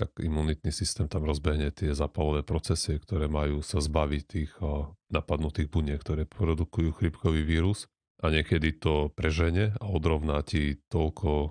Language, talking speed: Slovak, 140 wpm